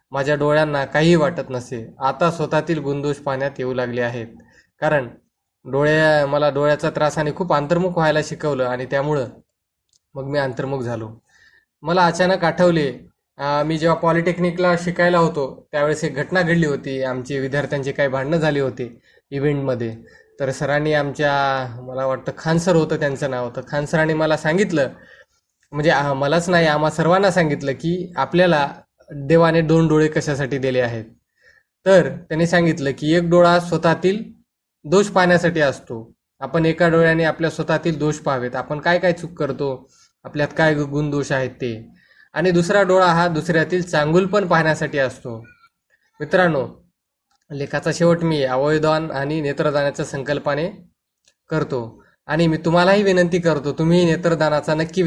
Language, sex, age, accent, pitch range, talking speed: Marathi, male, 20-39, native, 140-170 Hz, 140 wpm